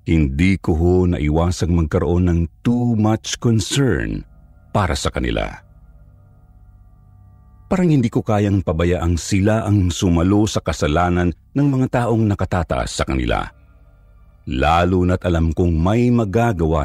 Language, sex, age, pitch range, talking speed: Filipino, male, 50-69, 85-105 Hz, 120 wpm